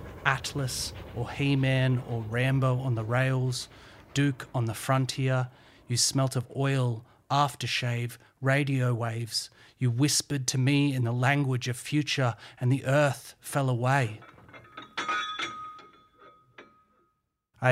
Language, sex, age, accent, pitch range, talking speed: English, male, 30-49, Australian, 120-135 Hz, 115 wpm